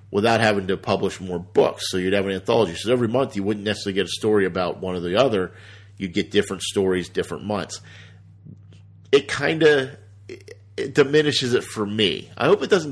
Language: English